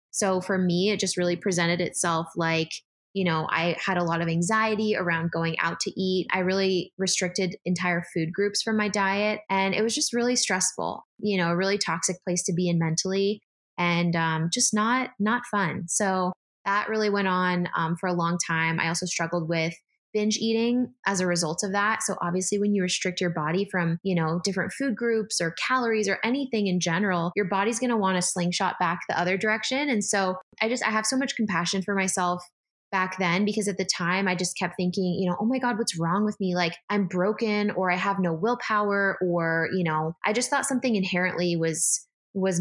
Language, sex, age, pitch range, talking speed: English, female, 20-39, 175-210 Hz, 215 wpm